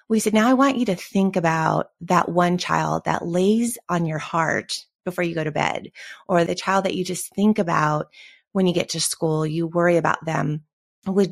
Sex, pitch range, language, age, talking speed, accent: female, 165-190 Hz, English, 30-49, 210 wpm, American